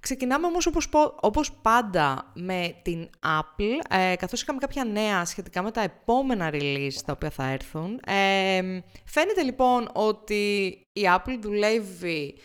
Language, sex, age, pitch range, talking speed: English, female, 20-39, 165-235 Hz, 130 wpm